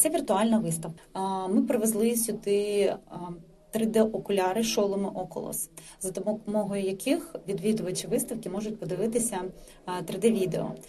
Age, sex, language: 30-49, female, Ukrainian